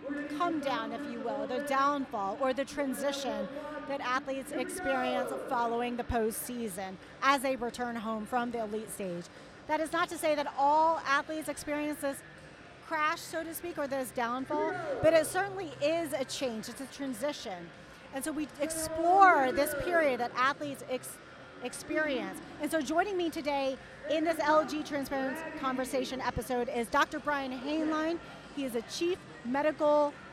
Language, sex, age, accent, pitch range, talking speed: English, female, 40-59, American, 240-295 Hz, 160 wpm